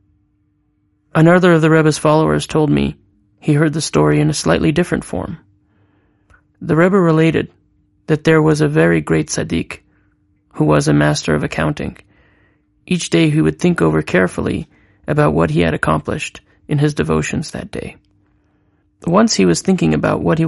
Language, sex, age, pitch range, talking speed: English, male, 30-49, 100-160 Hz, 165 wpm